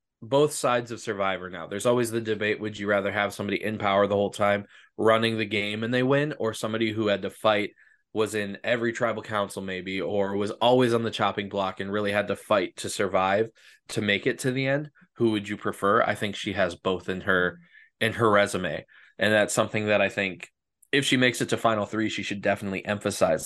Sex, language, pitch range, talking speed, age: male, English, 100-115 Hz, 225 wpm, 20-39